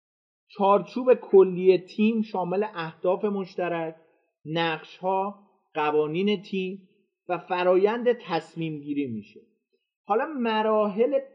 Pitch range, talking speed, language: 165-215 Hz, 85 wpm, Persian